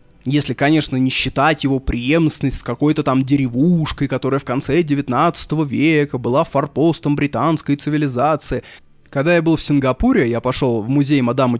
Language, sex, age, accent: Russian, male, 20-39, native